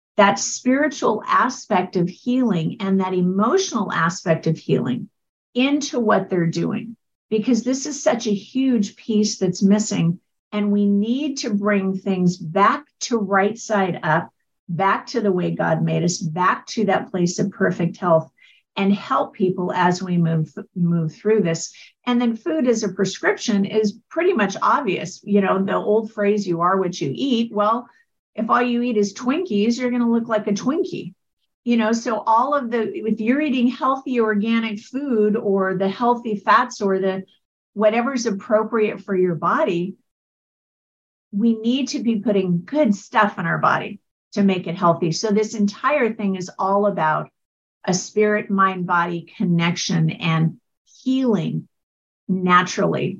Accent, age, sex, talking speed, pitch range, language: American, 50-69, female, 160 wpm, 180-230 Hz, English